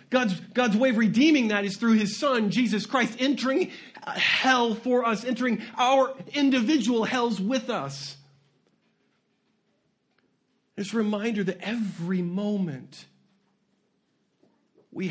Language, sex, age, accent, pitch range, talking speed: English, male, 40-59, American, 175-225 Hz, 115 wpm